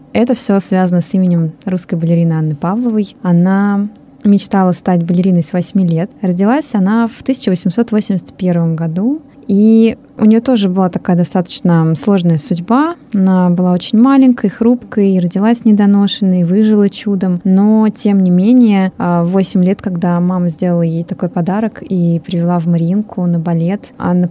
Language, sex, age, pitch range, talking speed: Russian, female, 20-39, 180-215 Hz, 145 wpm